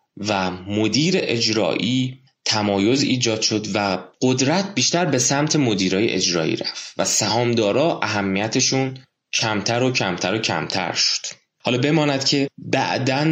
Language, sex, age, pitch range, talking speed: Persian, male, 20-39, 100-135 Hz, 120 wpm